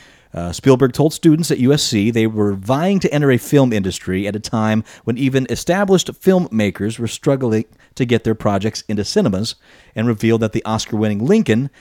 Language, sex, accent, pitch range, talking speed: English, male, American, 105-140 Hz, 180 wpm